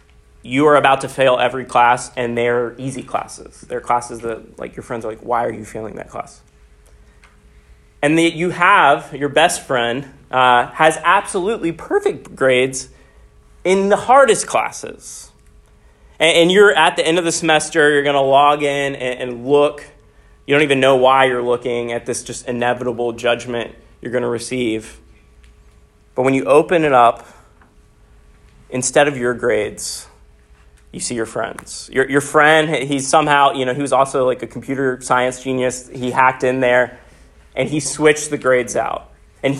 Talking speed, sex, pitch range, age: 175 wpm, male, 120-150 Hz, 30-49